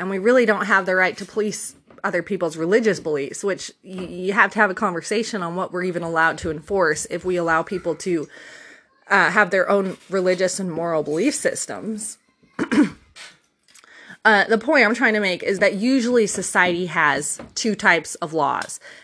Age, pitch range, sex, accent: 20-39, 170-215 Hz, female, American